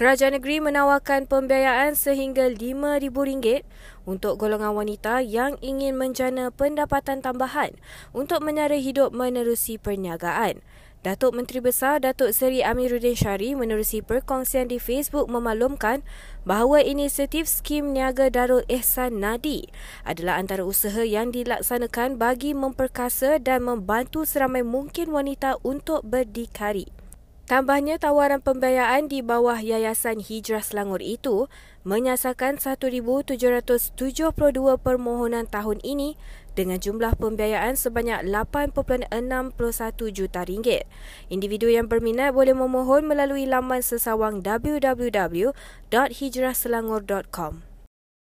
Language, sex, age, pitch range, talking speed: Malay, female, 20-39, 230-275 Hz, 100 wpm